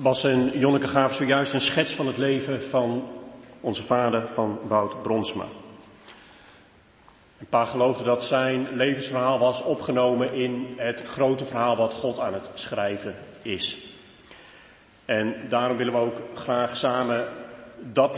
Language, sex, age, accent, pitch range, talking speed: Dutch, male, 40-59, Dutch, 120-155 Hz, 140 wpm